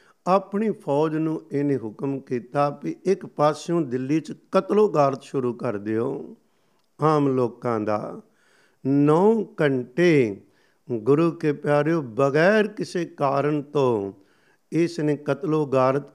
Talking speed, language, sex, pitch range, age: 110 wpm, Punjabi, male, 130-155 Hz, 50-69